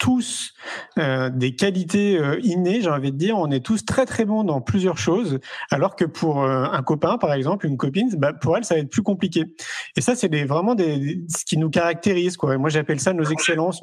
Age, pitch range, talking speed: 30-49, 145-190 Hz, 240 wpm